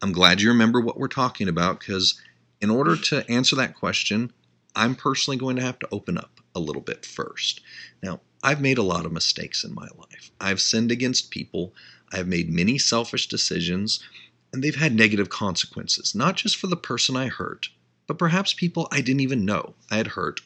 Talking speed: 200 wpm